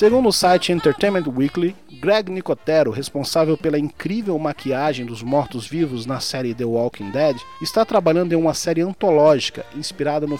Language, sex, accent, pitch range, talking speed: Portuguese, male, Brazilian, 140-180 Hz, 150 wpm